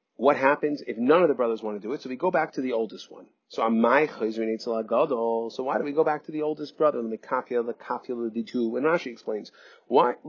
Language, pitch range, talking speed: English, 120-175 Hz, 210 wpm